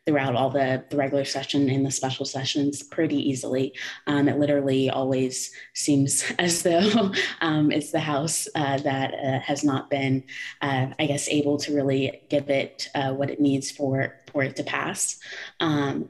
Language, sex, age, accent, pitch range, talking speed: English, female, 20-39, American, 135-145 Hz, 175 wpm